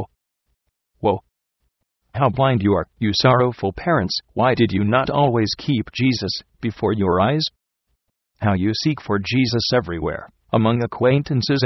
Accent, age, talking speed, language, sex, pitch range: American, 40-59, 135 wpm, English, male, 95-120 Hz